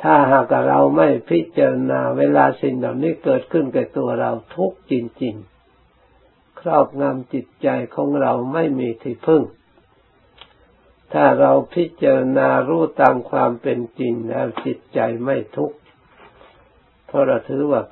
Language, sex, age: Thai, male, 60-79